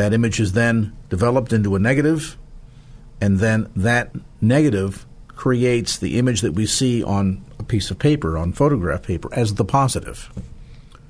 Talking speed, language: 155 wpm, English